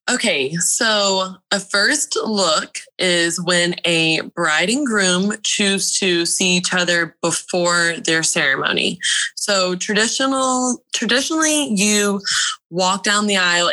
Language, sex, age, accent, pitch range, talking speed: English, female, 20-39, American, 175-205 Hz, 120 wpm